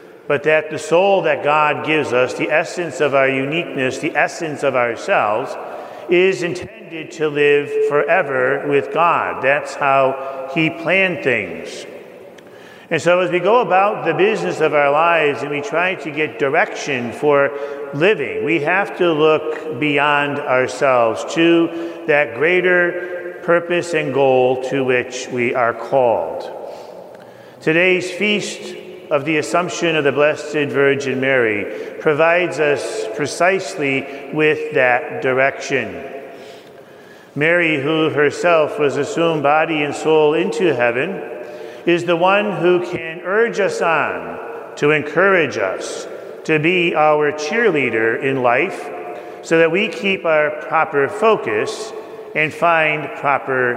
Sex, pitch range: male, 145-175 Hz